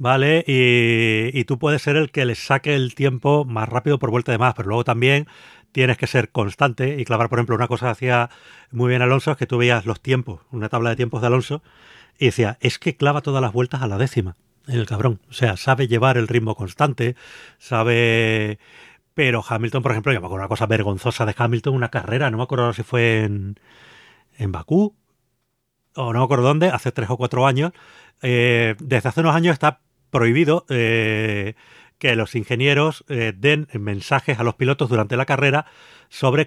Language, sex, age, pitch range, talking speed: Spanish, male, 40-59, 115-145 Hz, 200 wpm